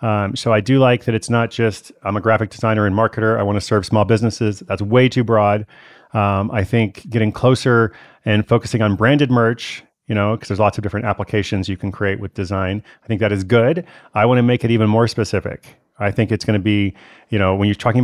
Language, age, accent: English, 30-49, American